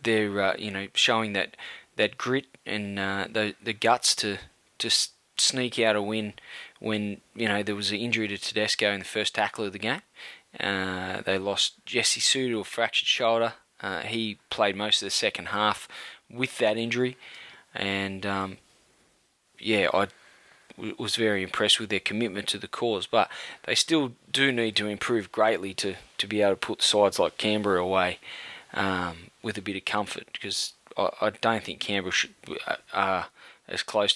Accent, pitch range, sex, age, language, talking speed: Australian, 100-115 Hz, male, 20-39, English, 175 wpm